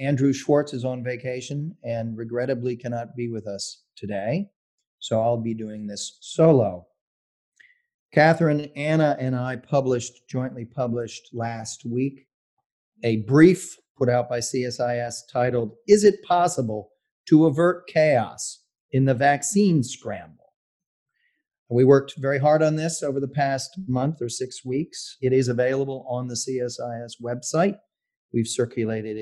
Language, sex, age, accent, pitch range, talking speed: English, male, 40-59, American, 120-165 Hz, 135 wpm